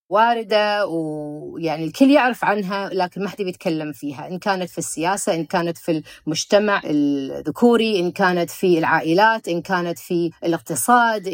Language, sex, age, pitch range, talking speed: Arabic, female, 30-49, 170-235 Hz, 145 wpm